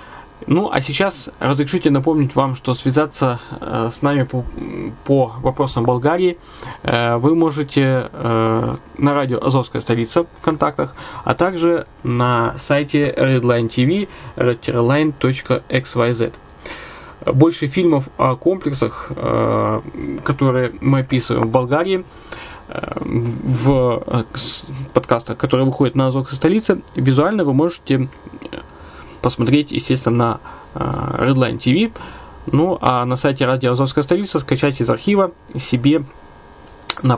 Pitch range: 125-150 Hz